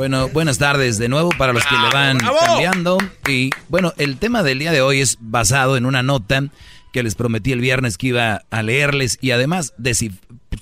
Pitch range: 115-140 Hz